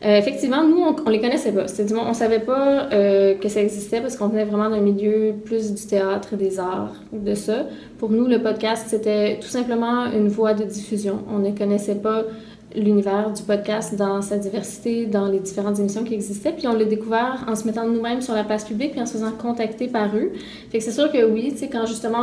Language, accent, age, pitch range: French, Canadian, 20-39, 210-235 Hz